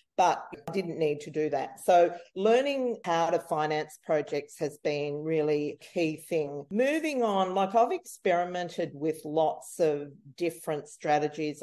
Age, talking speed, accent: 40-59, 150 wpm, Australian